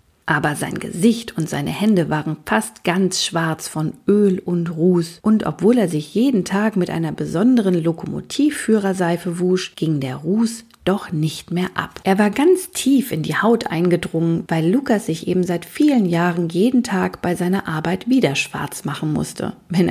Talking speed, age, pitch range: 170 wpm, 40-59, 165-220 Hz